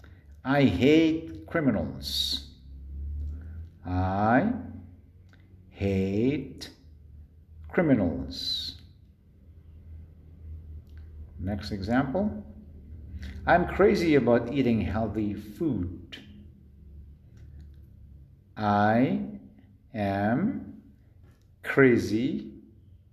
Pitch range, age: 80-110 Hz, 50-69